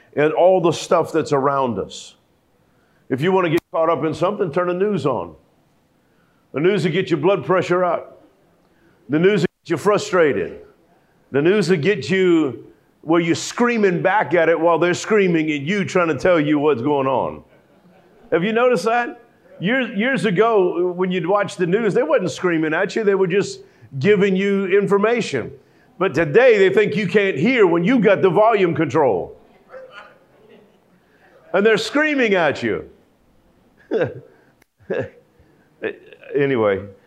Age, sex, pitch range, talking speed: 50-69, male, 145-200 Hz, 160 wpm